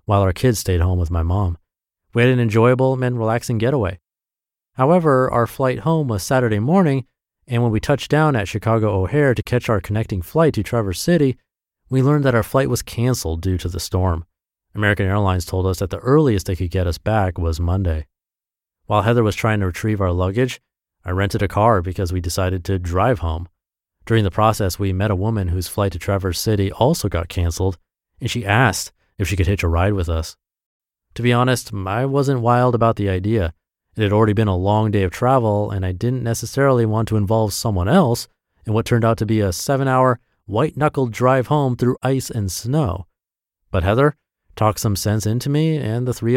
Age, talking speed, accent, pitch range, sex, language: 30-49, 205 wpm, American, 95-125 Hz, male, English